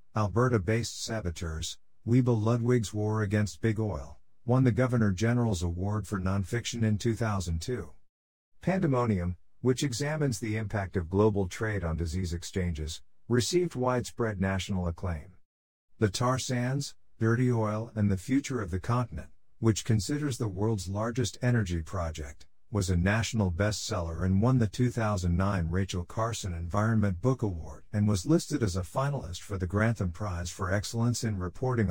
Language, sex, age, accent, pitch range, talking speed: English, male, 50-69, American, 90-115 Hz, 145 wpm